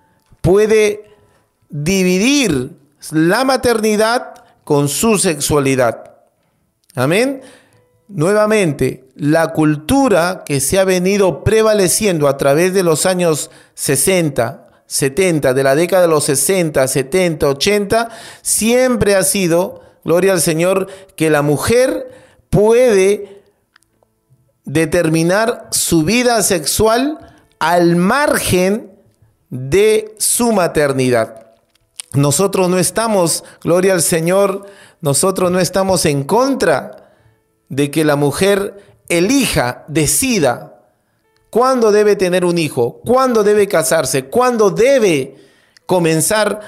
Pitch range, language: 150-215 Hz, Spanish